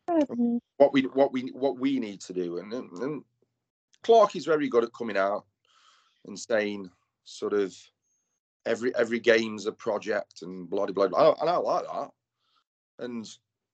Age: 30-49